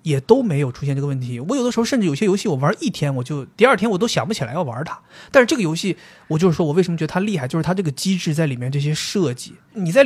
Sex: male